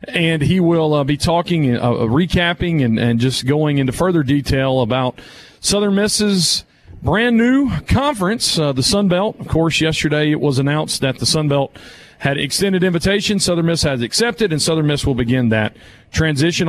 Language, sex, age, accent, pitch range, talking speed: English, male, 40-59, American, 150-195 Hz, 180 wpm